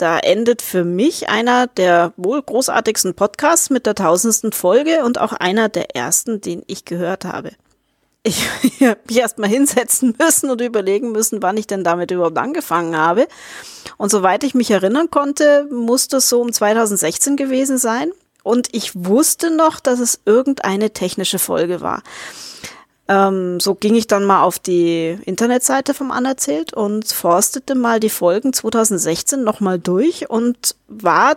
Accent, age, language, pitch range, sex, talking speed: German, 30-49, German, 190-265 Hz, female, 160 wpm